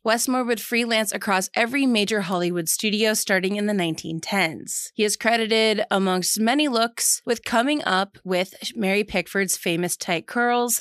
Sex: female